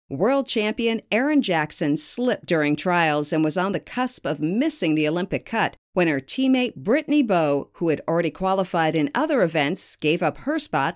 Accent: American